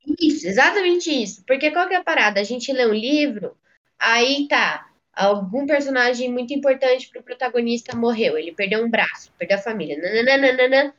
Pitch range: 230-315 Hz